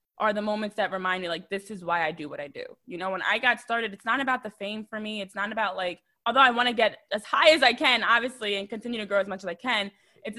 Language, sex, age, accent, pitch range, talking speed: English, female, 20-39, American, 185-220 Hz, 305 wpm